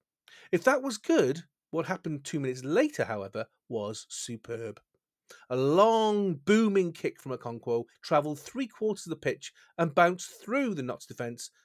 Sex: male